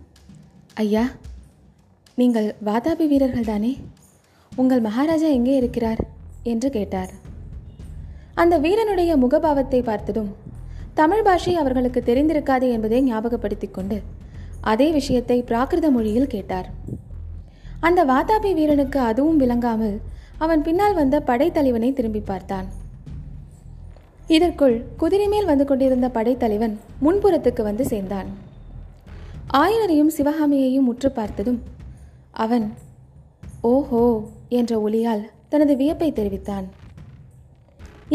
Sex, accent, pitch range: female, native, 220-300 Hz